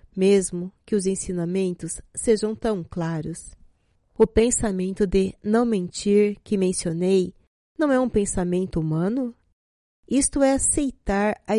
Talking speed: 120 wpm